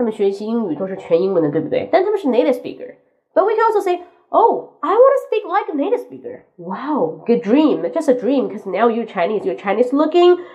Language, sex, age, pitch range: Chinese, female, 20-39, 200-315 Hz